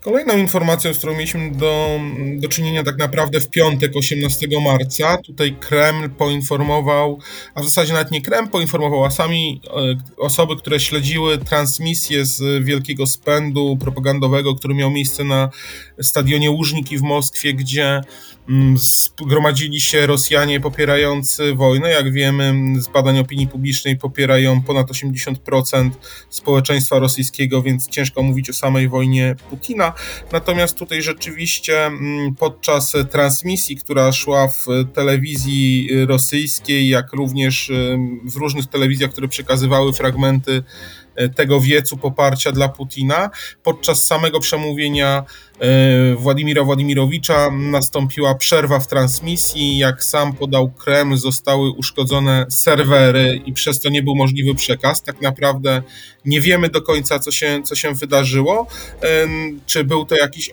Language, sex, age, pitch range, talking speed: Polish, male, 20-39, 135-150 Hz, 125 wpm